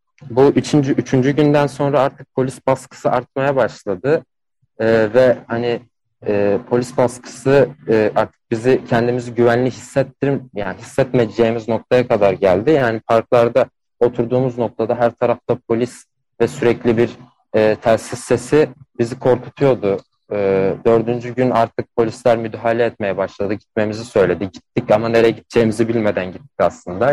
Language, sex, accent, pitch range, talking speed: Turkish, male, native, 115-125 Hz, 130 wpm